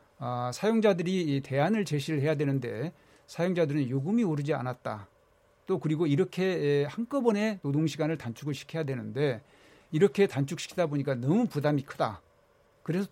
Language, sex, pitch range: Korean, male, 135-170 Hz